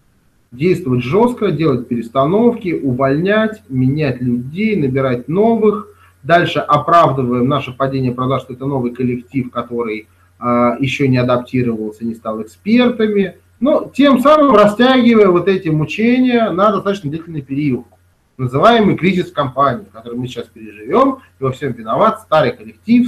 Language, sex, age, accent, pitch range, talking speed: Russian, male, 30-49, native, 120-195 Hz, 135 wpm